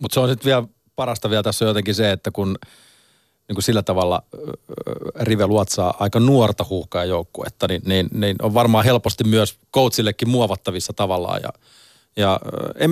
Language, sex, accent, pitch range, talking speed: Finnish, male, native, 105-135 Hz, 160 wpm